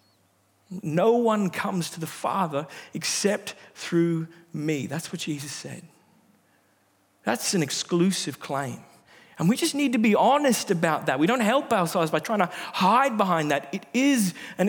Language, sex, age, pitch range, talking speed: English, male, 40-59, 155-220 Hz, 160 wpm